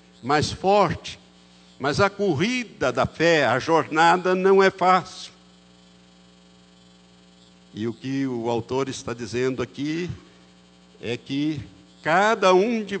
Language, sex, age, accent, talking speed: Portuguese, male, 60-79, Brazilian, 115 wpm